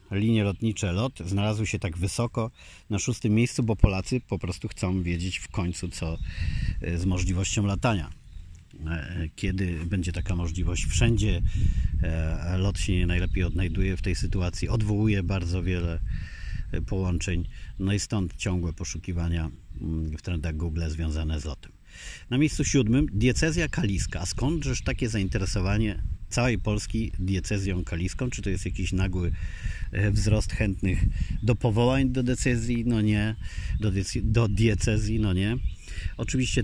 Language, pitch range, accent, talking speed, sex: Polish, 90-105 Hz, native, 135 wpm, male